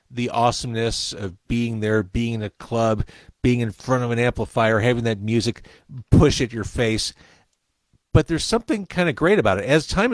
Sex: male